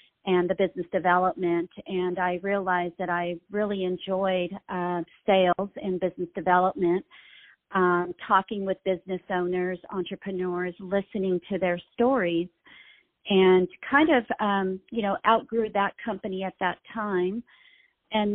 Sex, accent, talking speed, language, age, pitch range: female, American, 130 wpm, English, 40-59, 185-210 Hz